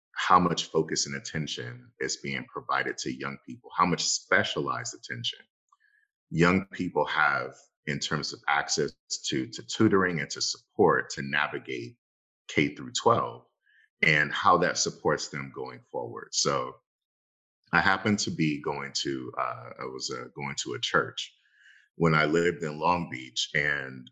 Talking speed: 155 wpm